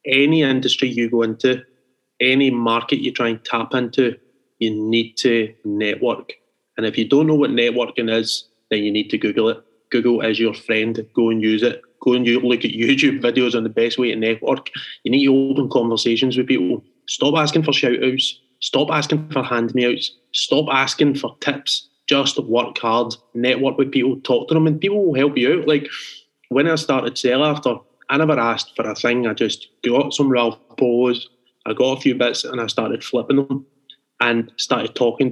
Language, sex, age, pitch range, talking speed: English, male, 20-39, 115-135 Hz, 195 wpm